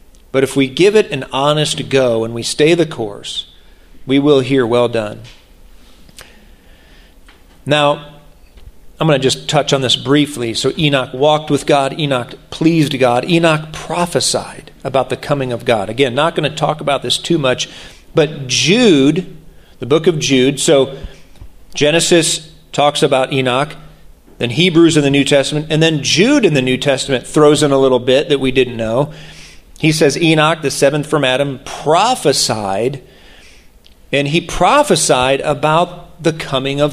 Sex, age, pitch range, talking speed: male, 40-59, 130-160 Hz, 160 wpm